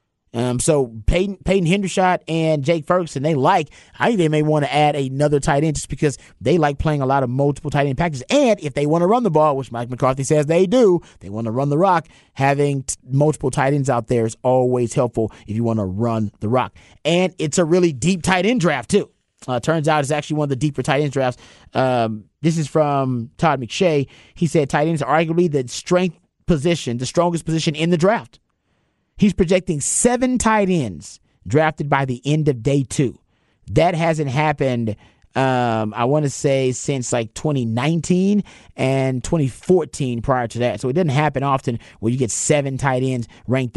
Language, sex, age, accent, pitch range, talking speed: English, male, 30-49, American, 125-160 Hz, 210 wpm